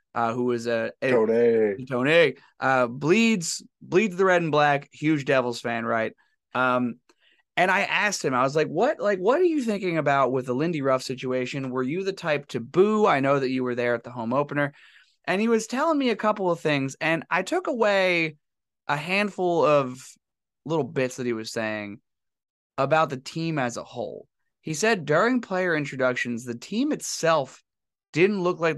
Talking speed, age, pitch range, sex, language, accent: 200 wpm, 20-39, 130-210 Hz, male, English, American